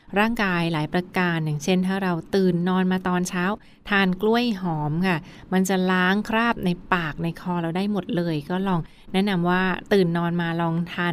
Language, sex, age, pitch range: Thai, female, 20-39, 170-205 Hz